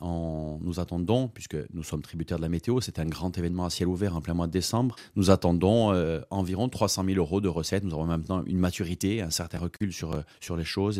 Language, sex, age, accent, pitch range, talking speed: French, male, 30-49, French, 85-110 Hz, 235 wpm